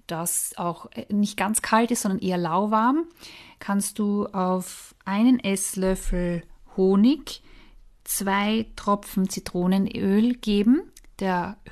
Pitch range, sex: 175-225 Hz, female